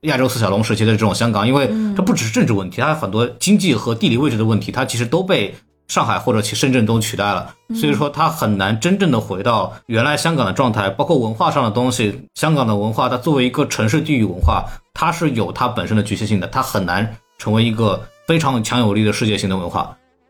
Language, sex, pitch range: Chinese, male, 105-145 Hz